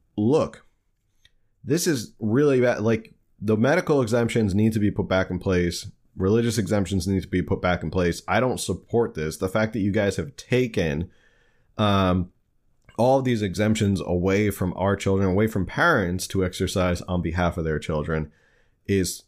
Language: English